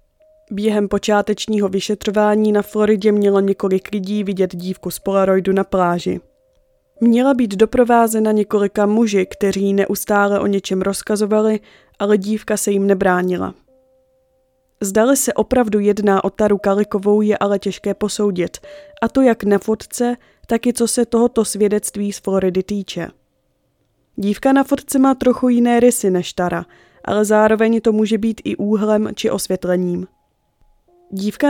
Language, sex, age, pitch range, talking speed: Czech, female, 20-39, 195-230 Hz, 140 wpm